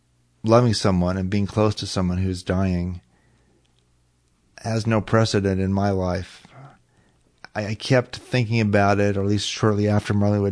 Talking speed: 155 wpm